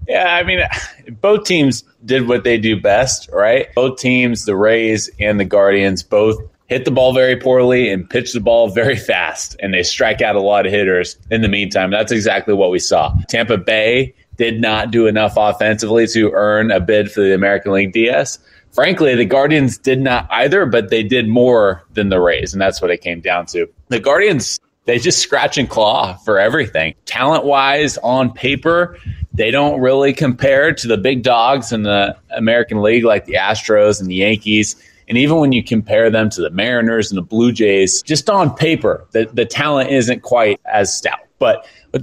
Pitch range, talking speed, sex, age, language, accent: 100-130 Hz, 195 wpm, male, 20-39, English, American